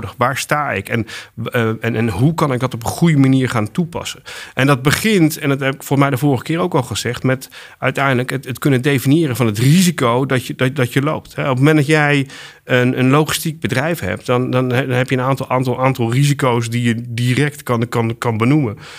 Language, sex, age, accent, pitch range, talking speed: Dutch, male, 40-59, Dutch, 115-135 Hz, 220 wpm